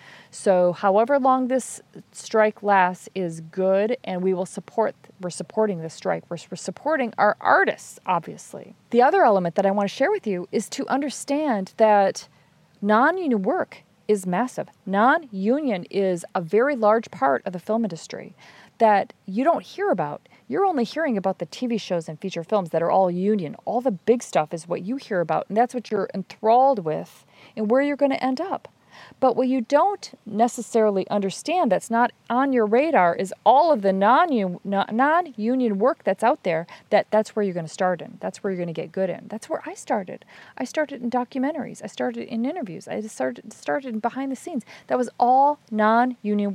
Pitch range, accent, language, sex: 190-250 Hz, American, English, female